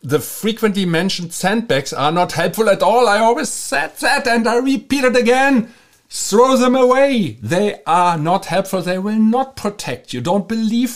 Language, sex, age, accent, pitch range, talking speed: English, male, 50-69, German, 155-210 Hz, 175 wpm